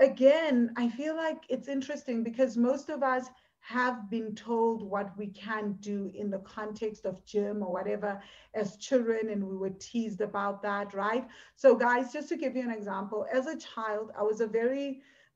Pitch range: 195-235 Hz